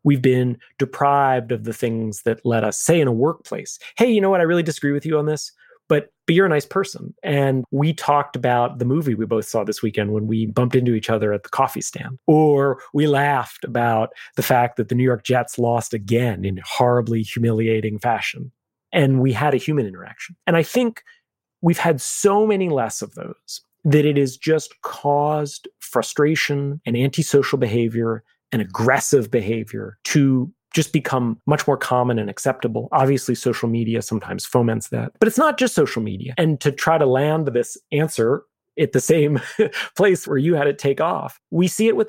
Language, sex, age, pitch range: English, male, 30-49, 115-150 Hz